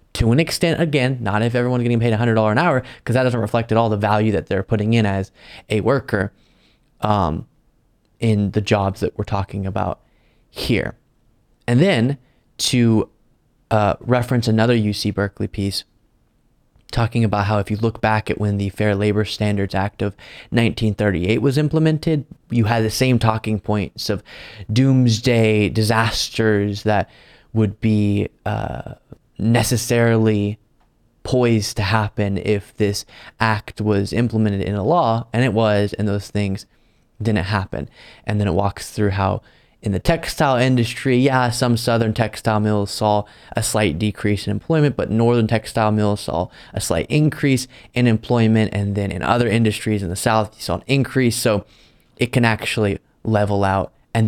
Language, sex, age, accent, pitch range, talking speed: English, male, 20-39, American, 105-120 Hz, 160 wpm